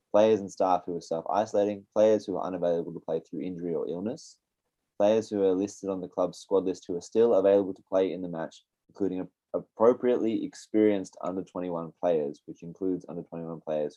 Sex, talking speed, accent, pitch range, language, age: male, 185 wpm, Australian, 85-100 Hz, English, 20-39